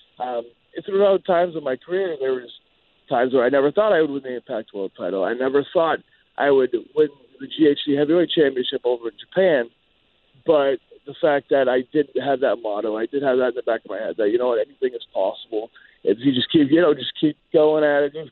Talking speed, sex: 235 wpm, male